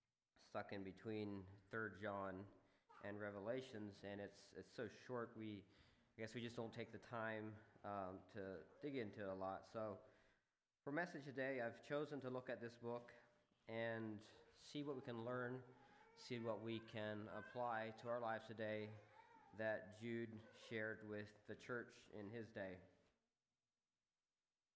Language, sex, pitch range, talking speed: English, male, 105-125 Hz, 155 wpm